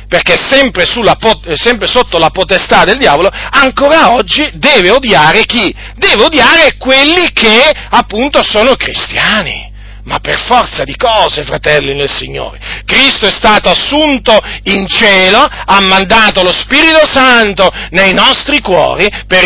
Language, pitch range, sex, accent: Italian, 185-270 Hz, male, native